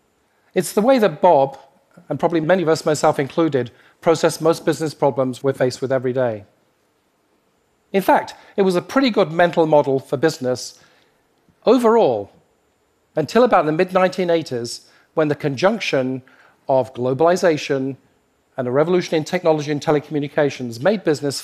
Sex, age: male, 40-59